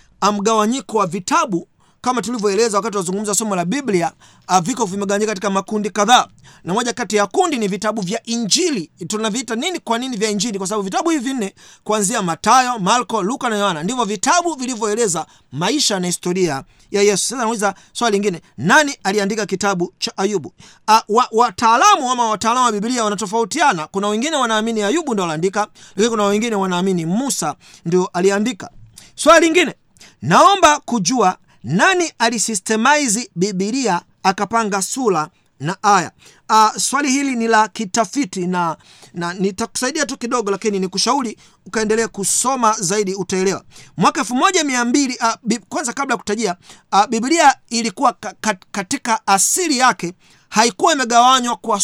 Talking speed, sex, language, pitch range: 135 wpm, male, Swahili, 195-240 Hz